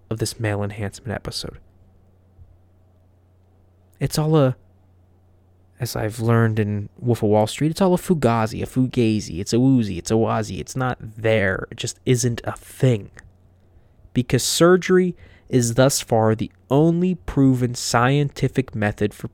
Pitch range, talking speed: 95-125 Hz, 145 wpm